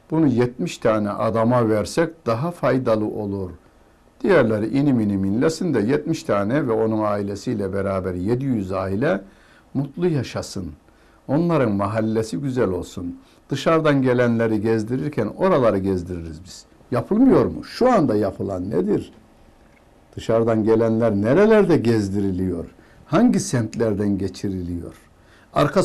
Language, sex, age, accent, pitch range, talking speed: Turkish, male, 60-79, native, 95-120 Hz, 105 wpm